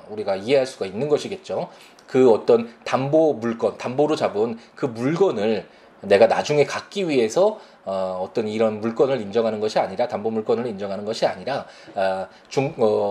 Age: 20-39